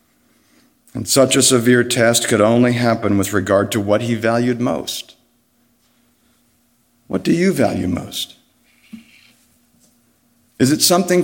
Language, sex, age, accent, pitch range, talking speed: English, male, 60-79, American, 105-140 Hz, 125 wpm